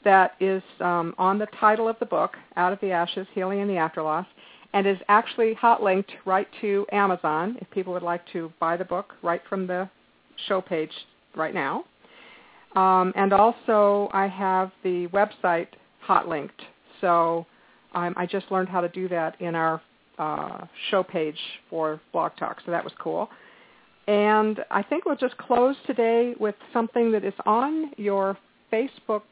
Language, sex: English, female